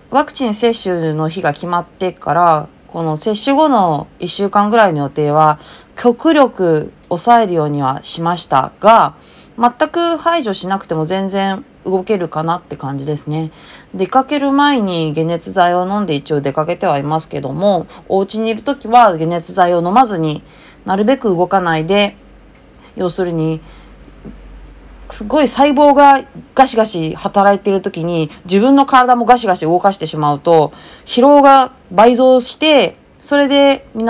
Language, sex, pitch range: Japanese, female, 160-225 Hz